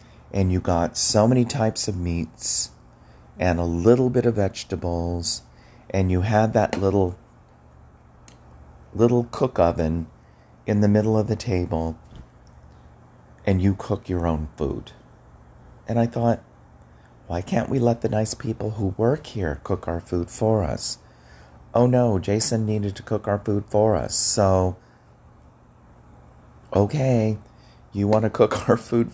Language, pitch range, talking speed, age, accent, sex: English, 80-110 Hz, 145 wpm, 40-59, American, male